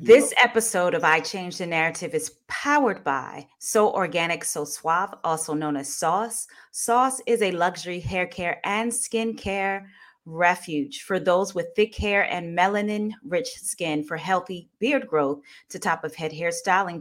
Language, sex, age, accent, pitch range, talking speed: English, female, 30-49, American, 160-225 Hz, 150 wpm